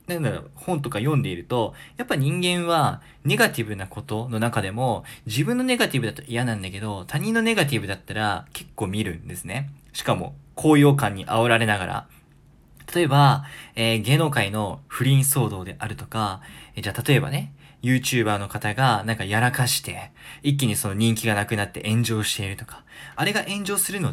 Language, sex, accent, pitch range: Japanese, male, native, 115-160 Hz